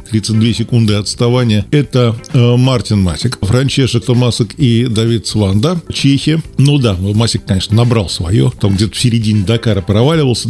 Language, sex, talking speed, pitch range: Russian, male, 145 wpm, 110-155 Hz